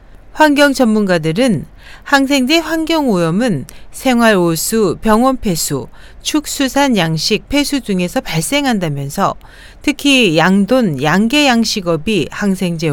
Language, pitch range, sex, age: Korean, 185-275 Hz, female, 40-59